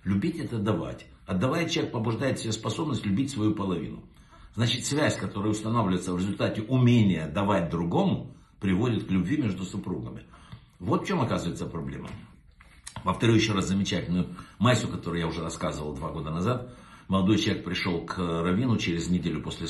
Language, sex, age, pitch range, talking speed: Russian, male, 60-79, 85-115 Hz, 155 wpm